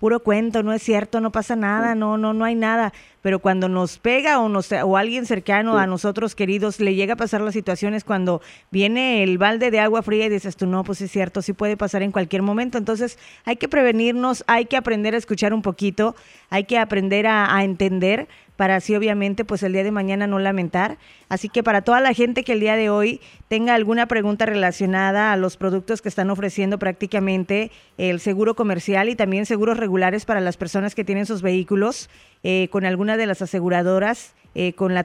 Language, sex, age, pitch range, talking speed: English, female, 20-39, 195-230 Hz, 210 wpm